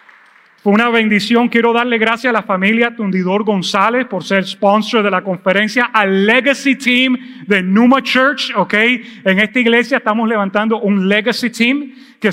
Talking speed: 155 wpm